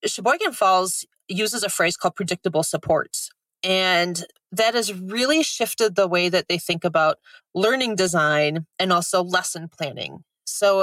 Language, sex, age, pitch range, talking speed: English, female, 30-49, 170-215 Hz, 145 wpm